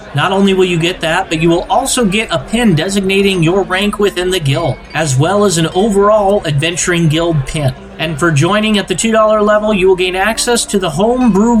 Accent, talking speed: American, 210 wpm